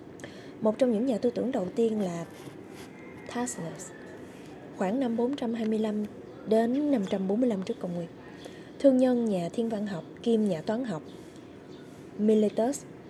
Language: Vietnamese